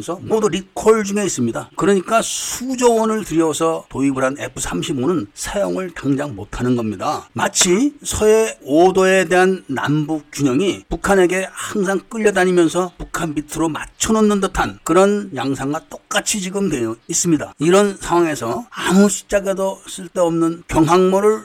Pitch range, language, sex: 140-195 Hz, Korean, male